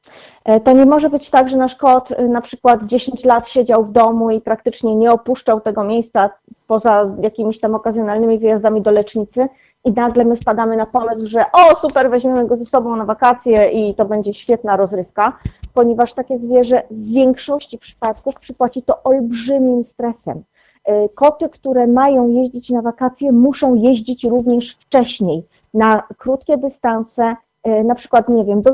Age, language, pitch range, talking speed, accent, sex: 30-49, Polish, 215-255 Hz, 160 wpm, native, female